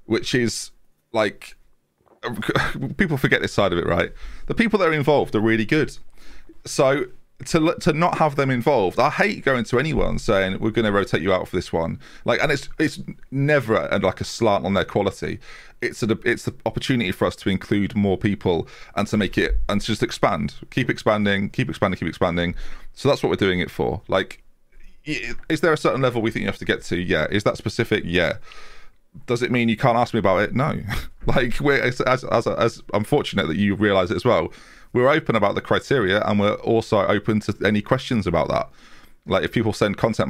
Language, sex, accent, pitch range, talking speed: English, male, British, 100-130 Hz, 215 wpm